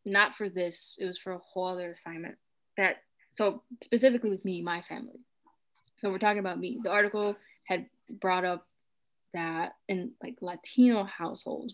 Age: 20-39